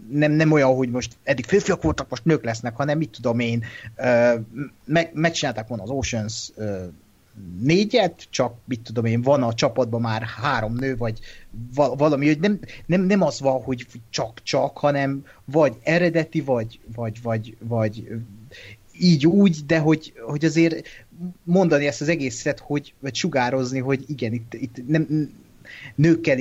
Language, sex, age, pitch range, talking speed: Hungarian, male, 30-49, 110-140 Hz, 150 wpm